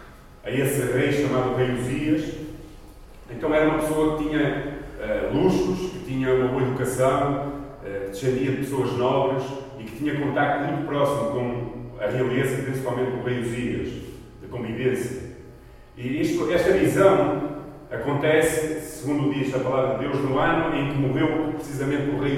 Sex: male